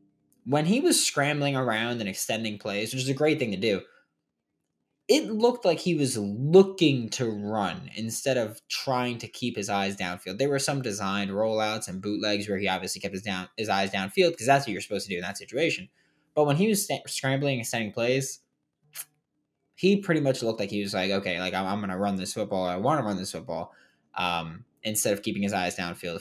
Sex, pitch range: male, 100-135 Hz